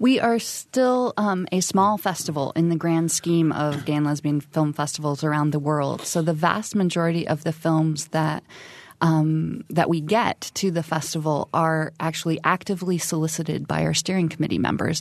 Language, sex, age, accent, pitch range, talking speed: English, female, 20-39, American, 155-180 Hz, 175 wpm